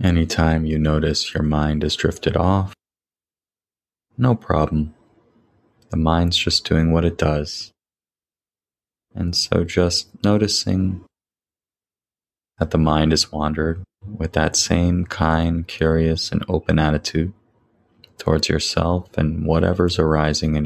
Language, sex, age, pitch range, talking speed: English, male, 20-39, 80-100 Hz, 115 wpm